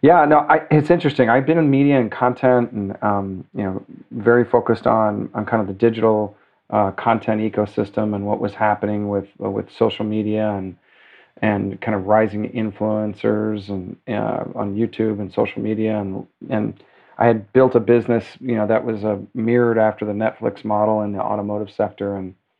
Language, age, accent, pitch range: English, 40-59, American, 105-120 Hz